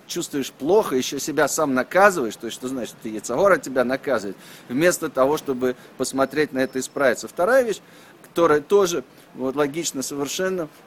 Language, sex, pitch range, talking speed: Russian, male, 135-180 Hz, 155 wpm